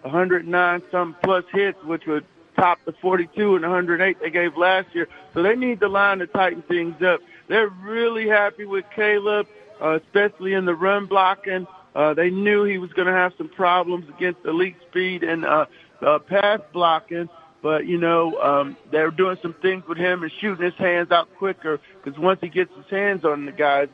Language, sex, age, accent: English, male, 50-69, American